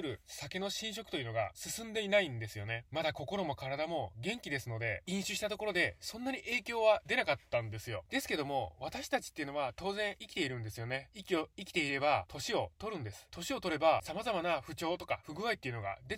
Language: Japanese